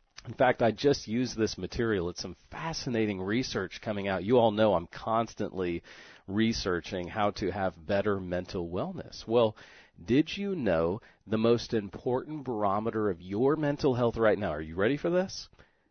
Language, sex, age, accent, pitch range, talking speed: English, male, 40-59, American, 95-125 Hz, 165 wpm